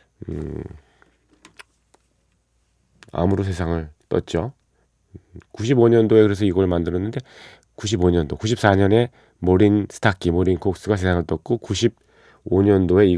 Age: 40-59